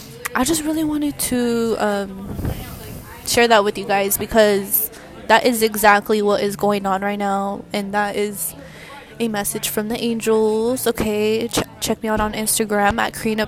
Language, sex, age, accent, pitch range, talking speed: English, female, 20-39, American, 205-230 Hz, 170 wpm